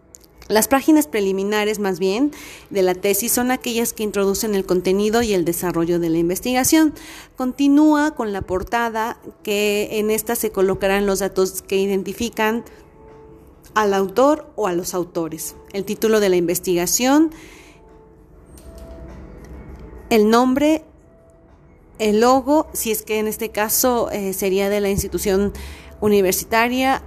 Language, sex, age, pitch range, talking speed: Spanish, female, 30-49, 190-240 Hz, 135 wpm